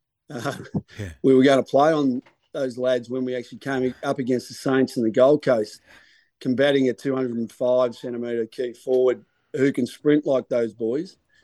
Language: English